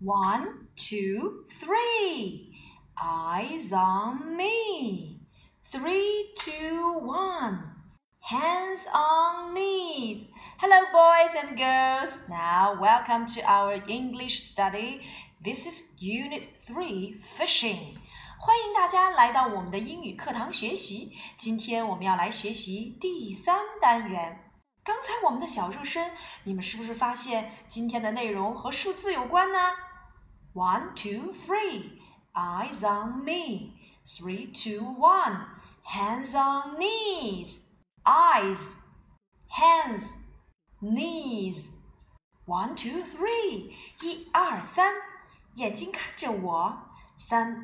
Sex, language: female, Chinese